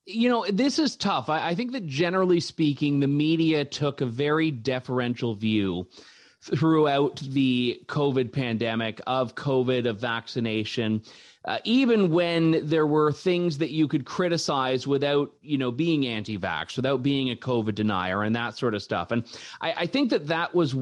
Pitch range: 125-165 Hz